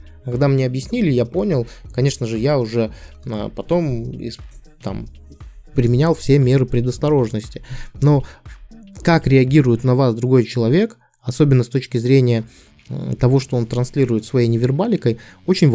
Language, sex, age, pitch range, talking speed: Russian, male, 20-39, 110-135 Hz, 125 wpm